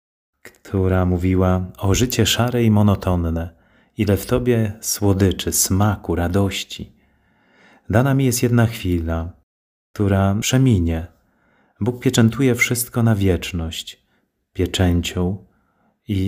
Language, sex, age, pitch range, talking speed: Polish, male, 30-49, 85-110 Hz, 100 wpm